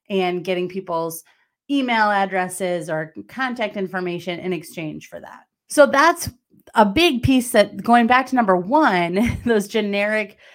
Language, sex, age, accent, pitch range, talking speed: English, female, 30-49, American, 180-235 Hz, 140 wpm